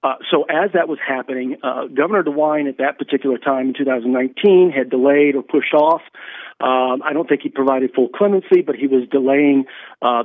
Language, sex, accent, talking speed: English, male, American, 195 wpm